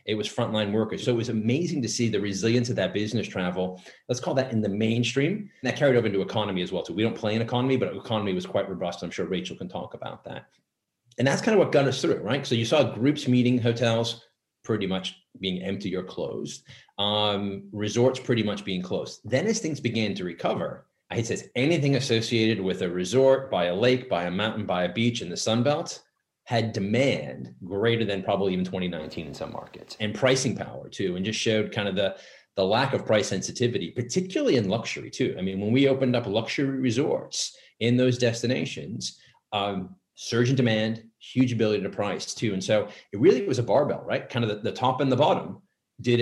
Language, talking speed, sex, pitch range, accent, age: English, 215 wpm, male, 100-120 Hz, American, 30-49